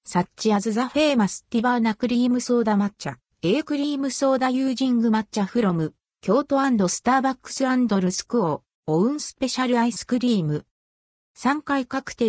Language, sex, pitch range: Japanese, female, 195-270 Hz